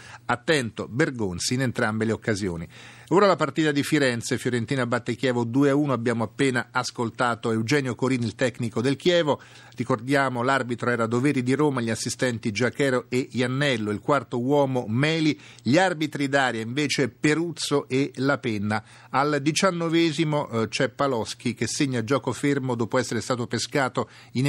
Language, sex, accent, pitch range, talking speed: Italian, male, native, 120-145 Hz, 145 wpm